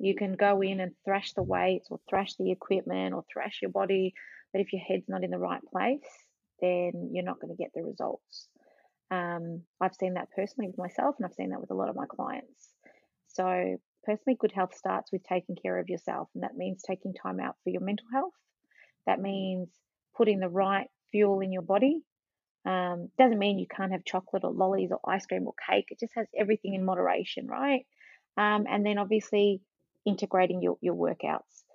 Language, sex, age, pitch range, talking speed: English, female, 30-49, 180-215 Hz, 205 wpm